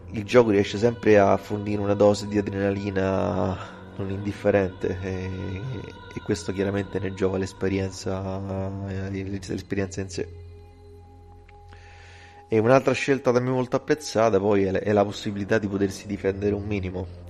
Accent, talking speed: native, 130 wpm